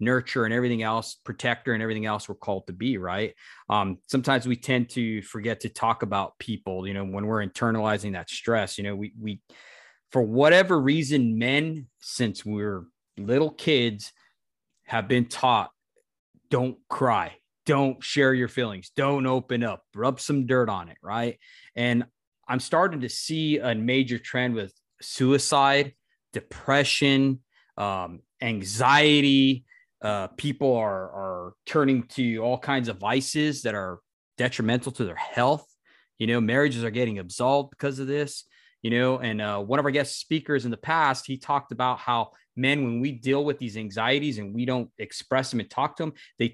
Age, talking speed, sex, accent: 20-39, 170 wpm, male, American